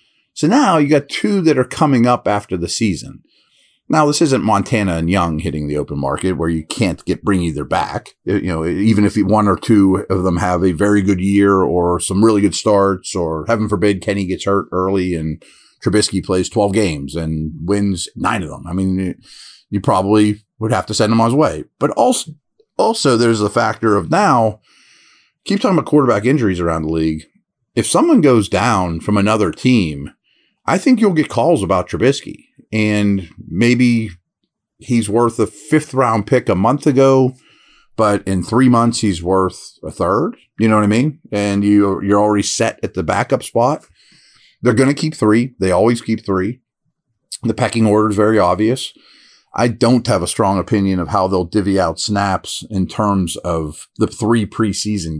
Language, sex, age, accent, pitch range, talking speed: English, male, 30-49, American, 90-115 Hz, 190 wpm